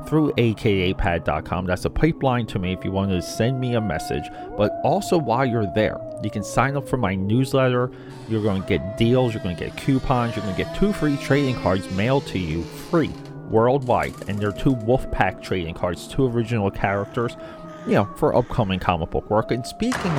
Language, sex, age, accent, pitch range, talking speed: English, male, 30-49, American, 100-140 Hz, 205 wpm